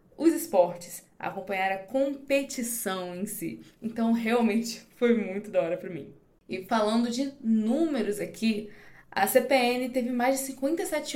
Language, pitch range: Portuguese, 225-295 Hz